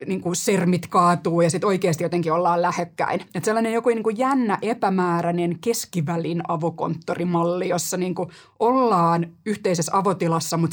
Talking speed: 125 wpm